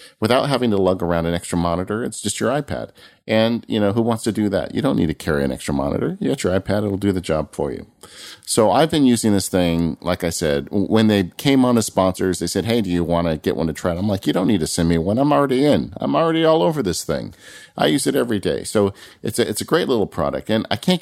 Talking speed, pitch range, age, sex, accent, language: 275 wpm, 80-105 Hz, 40-59, male, American, English